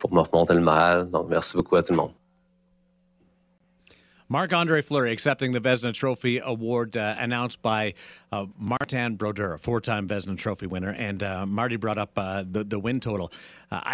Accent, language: American, English